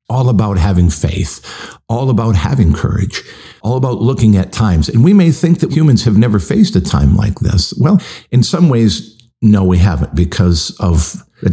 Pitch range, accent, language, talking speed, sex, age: 90-115 Hz, American, English, 185 wpm, male, 50-69